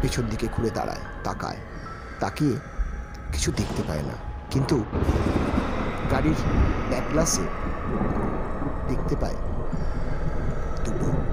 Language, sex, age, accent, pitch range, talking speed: Bengali, male, 50-69, native, 75-115 Hz, 80 wpm